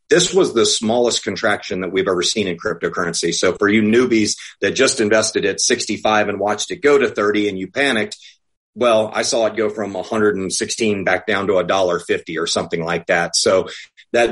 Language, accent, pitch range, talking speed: English, American, 105-130 Hz, 215 wpm